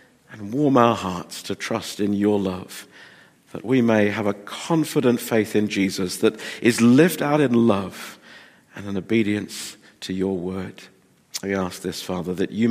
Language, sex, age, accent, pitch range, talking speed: English, male, 50-69, British, 100-125 Hz, 170 wpm